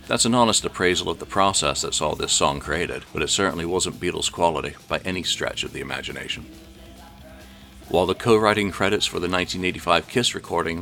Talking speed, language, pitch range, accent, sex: 185 wpm, English, 80-100 Hz, American, male